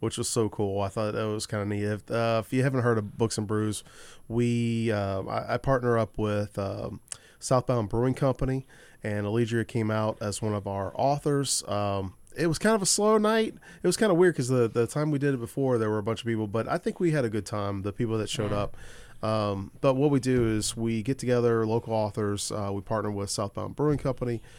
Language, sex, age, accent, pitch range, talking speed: English, male, 30-49, American, 105-130 Hz, 240 wpm